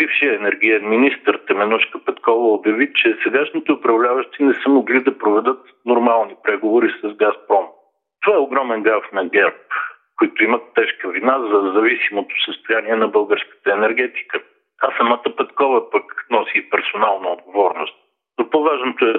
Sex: male